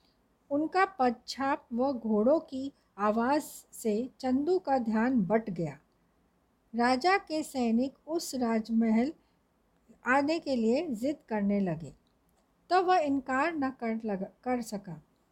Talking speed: 120 wpm